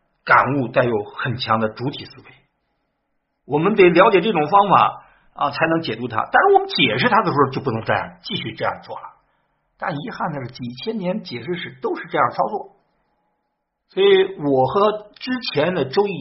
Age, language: 50-69, Chinese